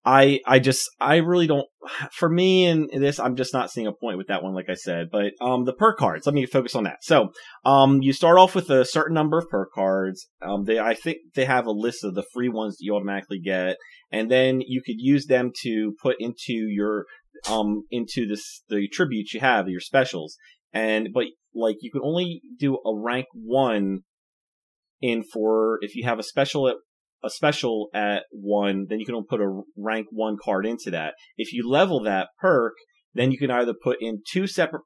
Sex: male